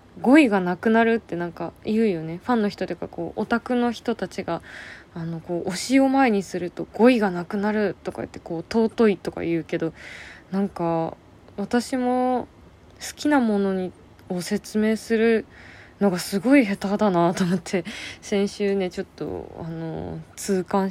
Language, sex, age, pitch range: Japanese, female, 20-39, 170-225 Hz